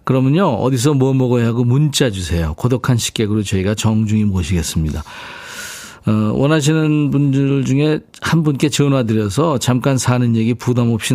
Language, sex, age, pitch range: Korean, male, 40-59, 110-155 Hz